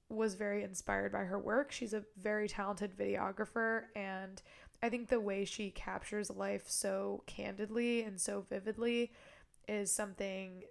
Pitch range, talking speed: 200-225 Hz, 145 wpm